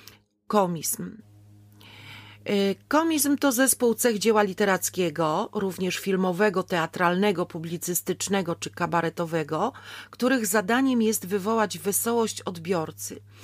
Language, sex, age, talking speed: Polish, female, 40-59, 85 wpm